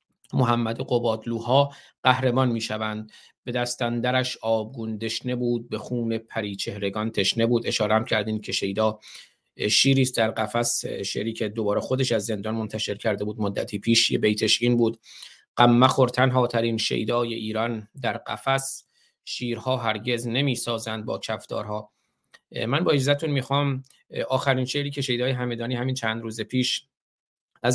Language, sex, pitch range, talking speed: Persian, male, 110-130 Hz, 145 wpm